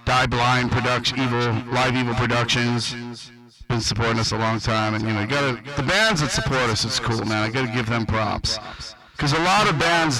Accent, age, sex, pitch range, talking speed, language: American, 40-59, male, 115-150 Hz, 210 wpm, English